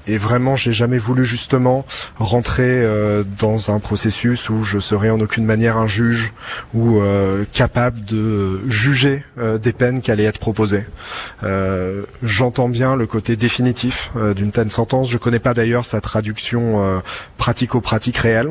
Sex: male